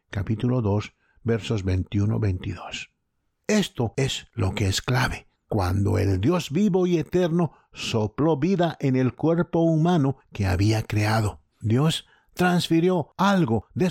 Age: 60-79